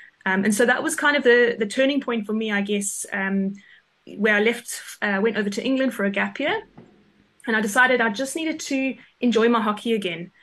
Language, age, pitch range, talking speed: English, 20-39, 205-240 Hz, 225 wpm